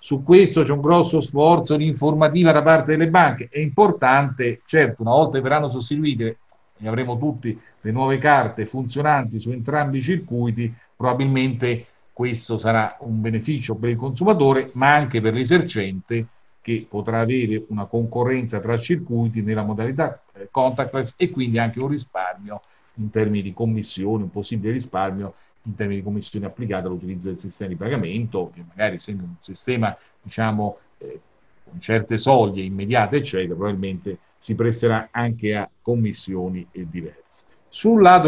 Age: 50-69